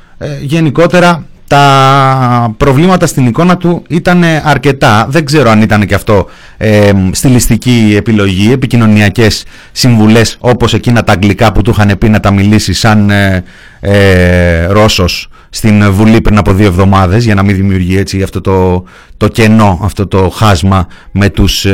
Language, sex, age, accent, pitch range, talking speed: Greek, male, 30-49, native, 90-120 Hz, 155 wpm